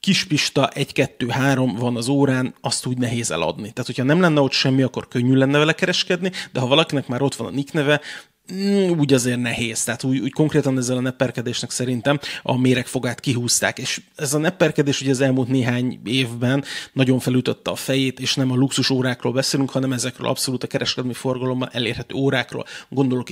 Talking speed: 180 wpm